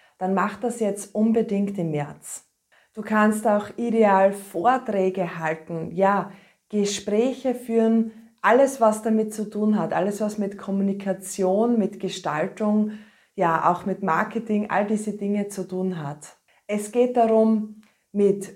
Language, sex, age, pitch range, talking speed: German, female, 20-39, 190-225 Hz, 130 wpm